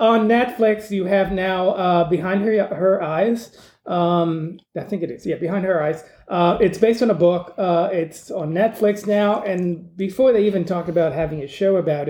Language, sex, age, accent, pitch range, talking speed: English, male, 30-49, American, 160-195 Hz, 200 wpm